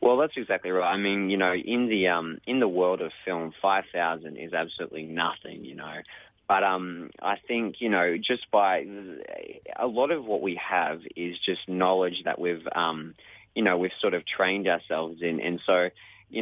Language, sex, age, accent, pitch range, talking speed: English, male, 20-39, Australian, 85-100 Hz, 195 wpm